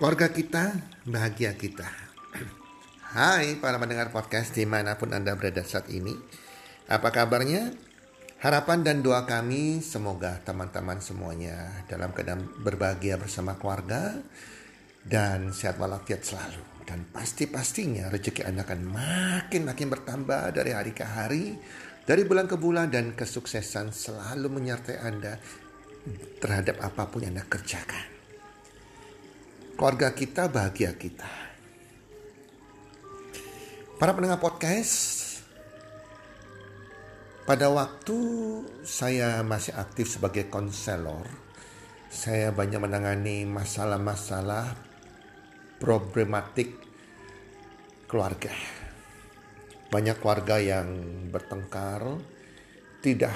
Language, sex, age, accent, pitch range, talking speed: Indonesian, male, 40-59, native, 100-135 Hz, 90 wpm